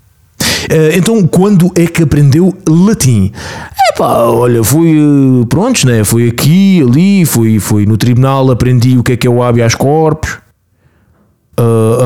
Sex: male